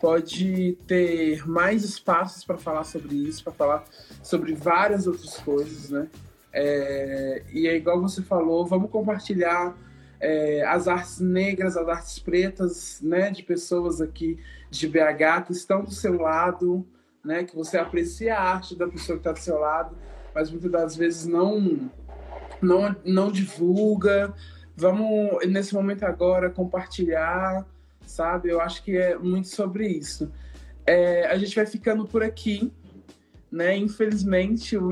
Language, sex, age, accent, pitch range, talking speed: Portuguese, male, 20-39, Brazilian, 165-195 Hz, 145 wpm